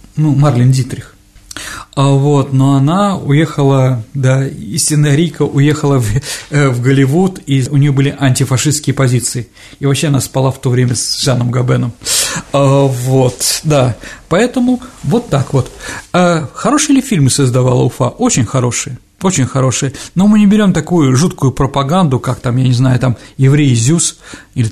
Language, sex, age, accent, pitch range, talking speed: Russian, male, 50-69, native, 125-150 Hz, 155 wpm